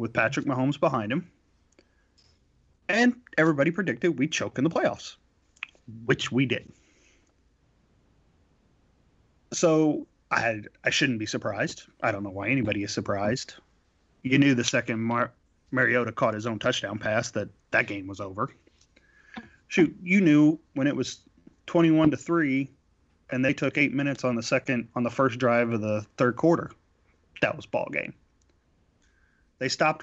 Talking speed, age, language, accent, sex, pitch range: 155 wpm, 30-49, English, American, male, 100-150 Hz